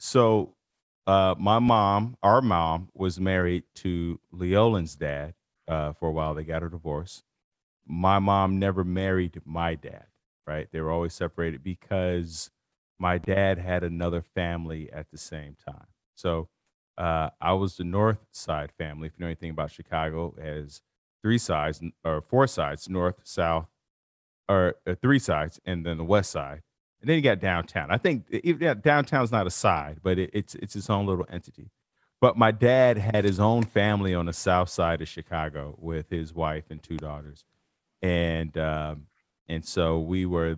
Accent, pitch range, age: American, 80-100 Hz, 40-59